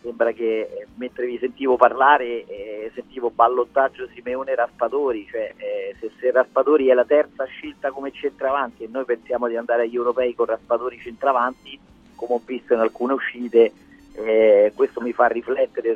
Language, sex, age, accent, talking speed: Italian, male, 40-59, native, 160 wpm